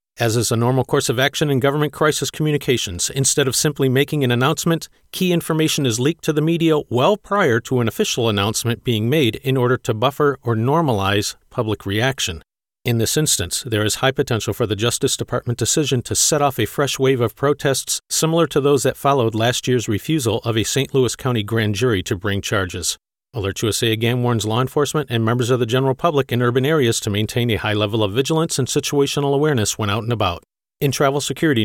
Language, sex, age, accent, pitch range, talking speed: English, male, 40-59, American, 110-140 Hz, 210 wpm